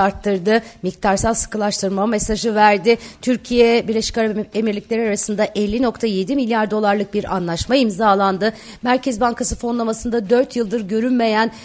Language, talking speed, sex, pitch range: Turkish, 115 wpm, female, 200-240 Hz